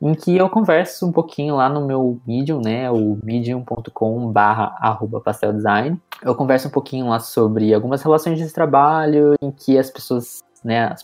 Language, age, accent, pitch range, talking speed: Portuguese, 20-39, Brazilian, 115-140 Hz, 165 wpm